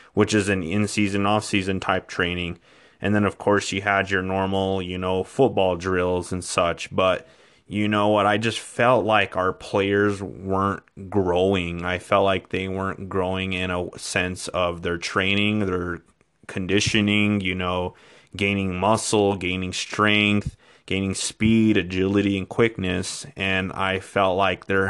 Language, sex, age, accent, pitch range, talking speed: English, male, 30-49, American, 95-105 Hz, 155 wpm